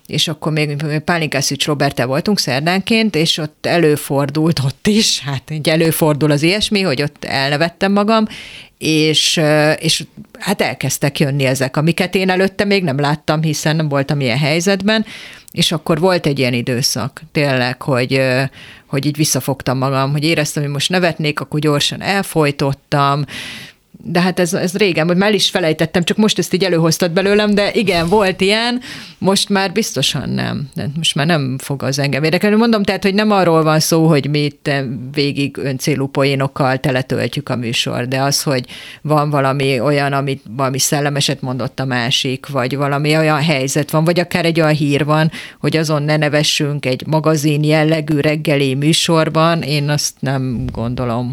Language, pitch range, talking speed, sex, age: Hungarian, 140-175 Hz, 160 wpm, female, 40-59